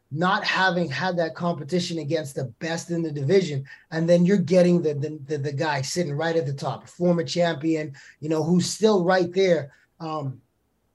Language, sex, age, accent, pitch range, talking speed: English, male, 20-39, American, 155-180 Hz, 190 wpm